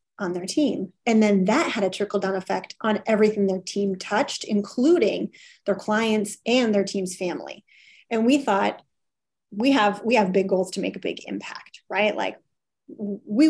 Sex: female